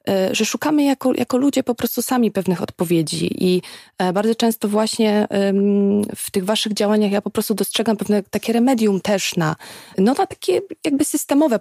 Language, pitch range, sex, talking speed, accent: Polish, 185-220 Hz, female, 165 wpm, native